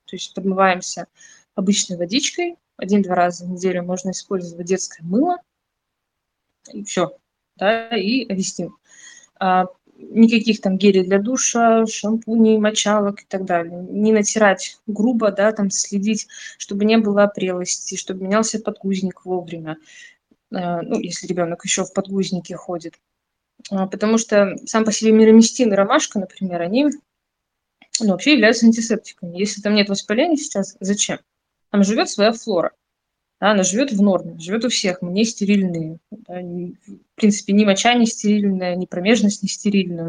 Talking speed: 150 wpm